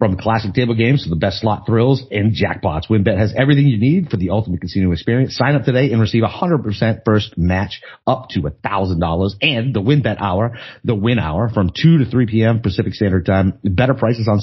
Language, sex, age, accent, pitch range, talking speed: English, male, 40-59, American, 95-125 Hz, 215 wpm